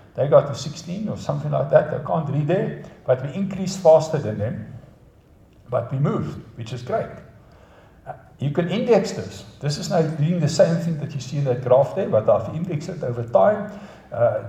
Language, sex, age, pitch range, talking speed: English, male, 60-79, 125-175 Hz, 205 wpm